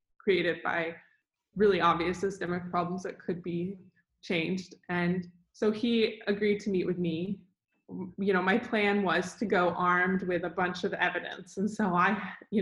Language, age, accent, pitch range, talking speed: English, 20-39, American, 175-205 Hz, 165 wpm